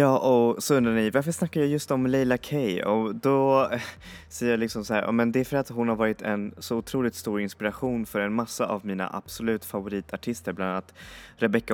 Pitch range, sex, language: 95-110 Hz, male, Swedish